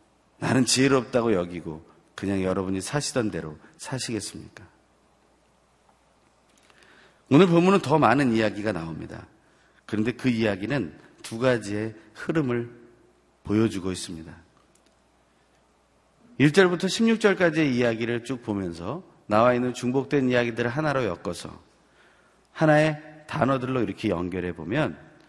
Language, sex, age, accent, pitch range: Korean, male, 40-59, native, 95-140 Hz